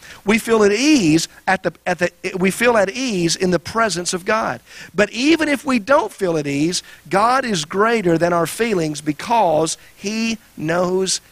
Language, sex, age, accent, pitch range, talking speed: English, male, 50-69, American, 150-195 Hz, 180 wpm